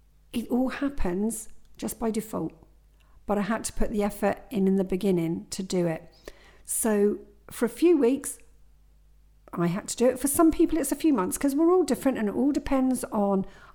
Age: 50-69